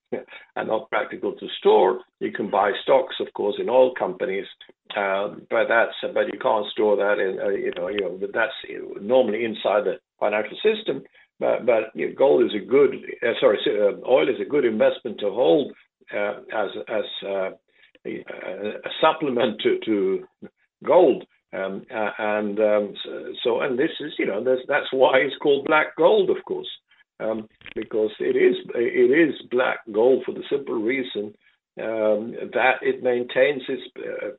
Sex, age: male, 60-79